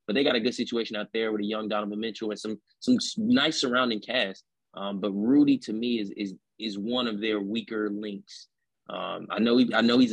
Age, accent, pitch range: 20-39, American, 105-120 Hz